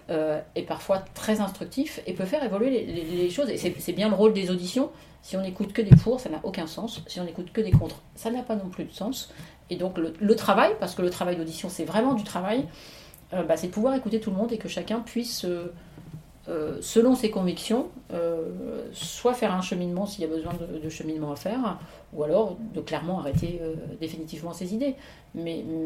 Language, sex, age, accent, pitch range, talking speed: French, female, 40-59, French, 170-220 Hz, 230 wpm